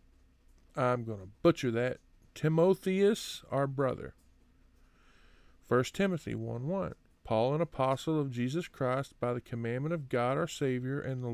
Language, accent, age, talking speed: English, American, 40-59, 150 wpm